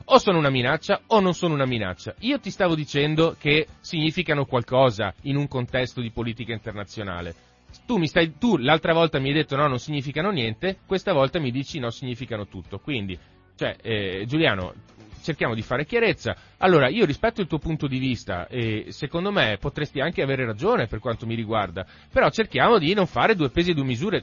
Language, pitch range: Italian, 110-155 Hz